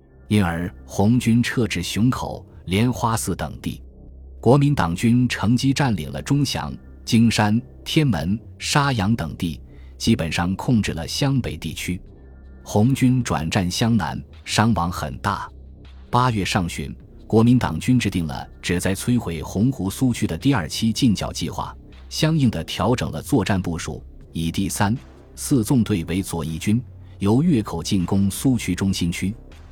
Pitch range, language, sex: 80-115 Hz, Chinese, male